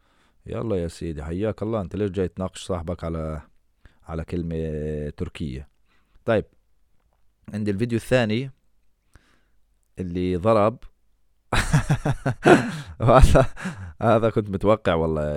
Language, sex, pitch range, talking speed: English, male, 85-115 Hz, 100 wpm